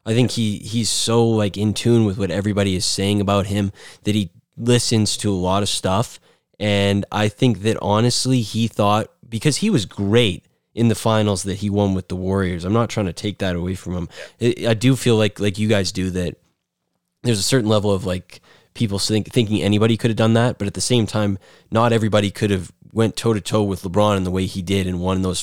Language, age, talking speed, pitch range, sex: English, 20-39, 225 wpm, 95-115 Hz, male